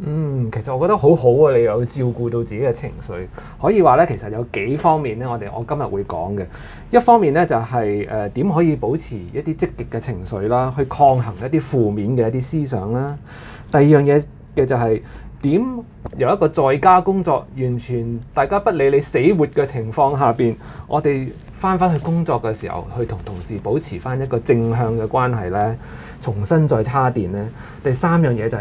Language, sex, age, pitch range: Chinese, male, 20-39, 115-155 Hz